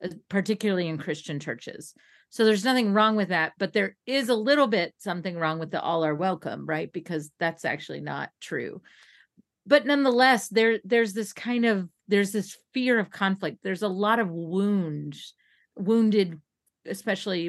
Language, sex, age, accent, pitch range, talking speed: English, female, 40-59, American, 165-210 Hz, 160 wpm